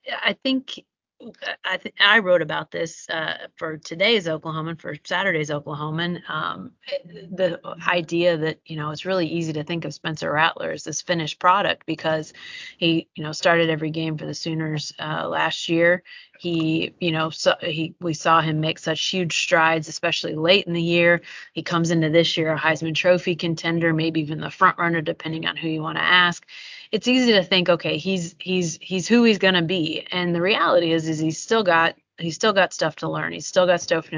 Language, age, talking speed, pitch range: English, 30-49, 205 wpm, 160-185 Hz